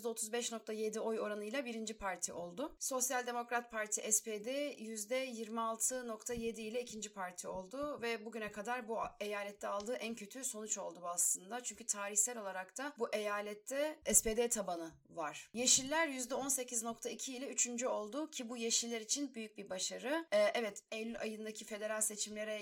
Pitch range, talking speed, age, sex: 205-250 Hz, 140 wpm, 30-49, female